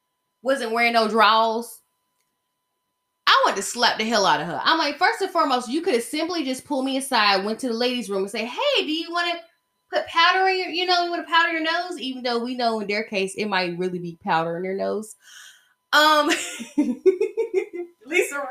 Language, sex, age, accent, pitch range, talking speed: English, female, 10-29, American, 190-300 Hz, 215 wpm